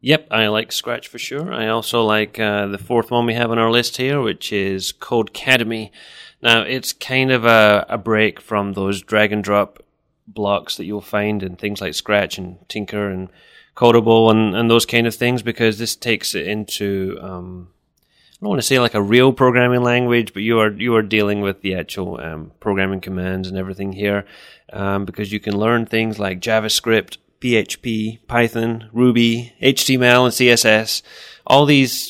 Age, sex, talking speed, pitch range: 30-49, male, 180 wpm, 100-120 Hz